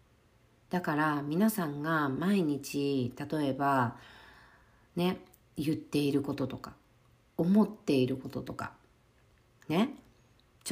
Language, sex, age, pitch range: Japanese, female, 50-69, 120-180 Hz